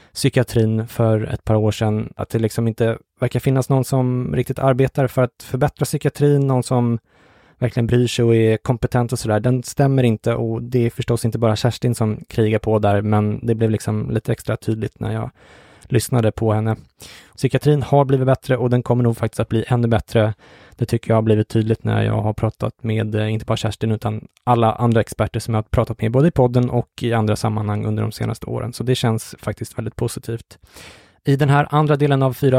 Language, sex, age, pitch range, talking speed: English, male, 20-39, 110-130 Hz, 215 wpm